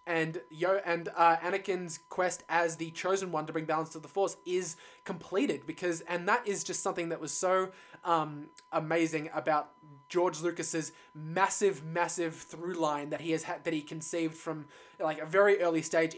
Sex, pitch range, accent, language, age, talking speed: male, 160-185 Hz, Australian, English, 20-39, 180 wpm